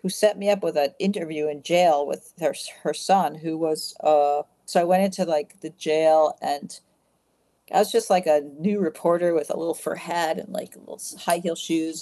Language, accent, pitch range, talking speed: English, American, 160-195 Hz, 210 wpm